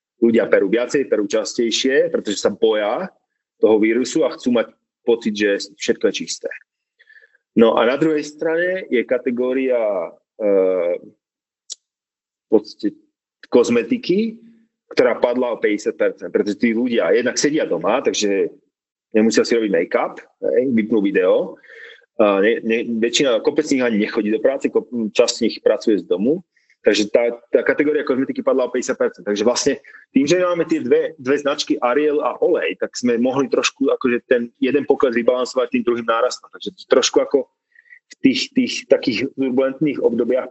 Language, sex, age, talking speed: English, male, 30-49, 155 wpm